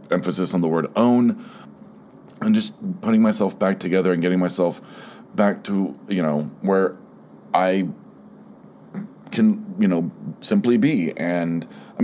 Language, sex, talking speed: English, male, 135 wpm